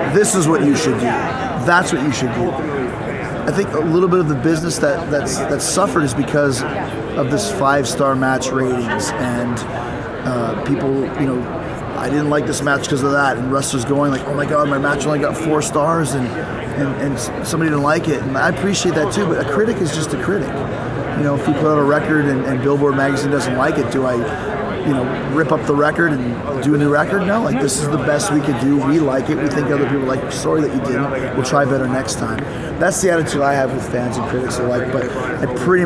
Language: English